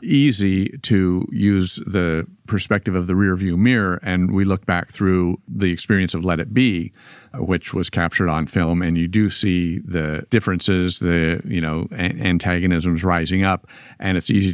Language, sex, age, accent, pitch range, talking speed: English, male, 50-69, American, 85-105 Hz, 165 wpm